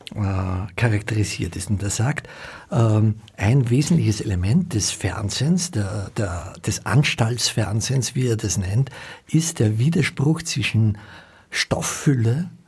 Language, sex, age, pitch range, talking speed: German, male, 60-79, 105-130 Hz, 120 wpm